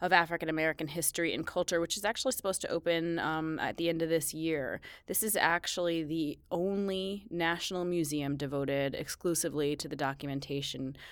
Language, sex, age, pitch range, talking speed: English, female, 20-39, 145-175 Hz, 160 wpm